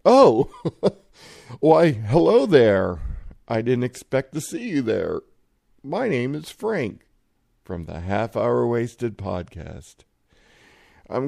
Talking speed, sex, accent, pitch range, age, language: 115 wpm, male, American, 100-125 Hz, 50-69, English